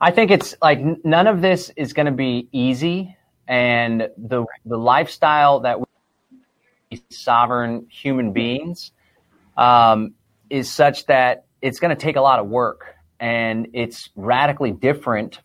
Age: 30-49